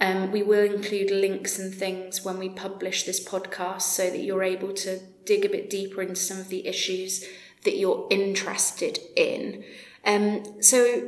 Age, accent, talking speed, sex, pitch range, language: 30-49, British, 175 wpm, female, 185-210 Hz, English